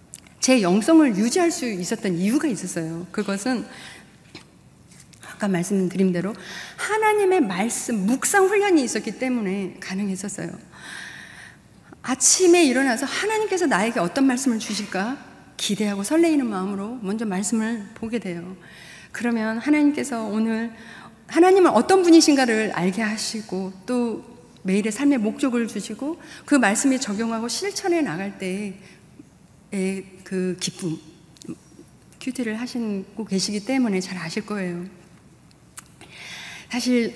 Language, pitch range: Korean, 190-270 Hz